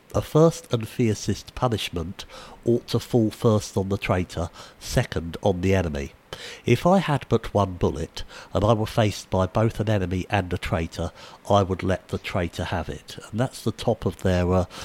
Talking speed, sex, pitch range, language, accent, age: 190 wpm, male, 95-120 Hz, English, British, 60-79